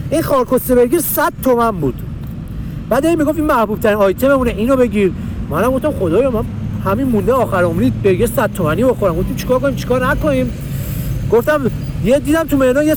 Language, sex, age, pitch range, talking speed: Persian, male, 40-59, 165-255 Hz, 185 wpm